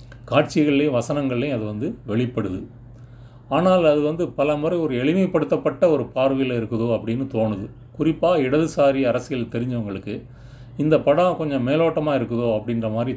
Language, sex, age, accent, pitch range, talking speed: Tamil, male, 40-59, native, 110-135 Hz, 125 wpm